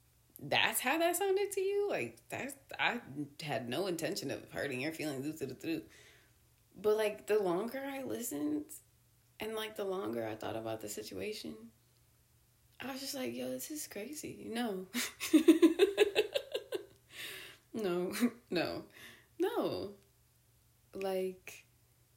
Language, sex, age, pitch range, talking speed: English, female, 20-39, 160-230 Hz, 115 wpm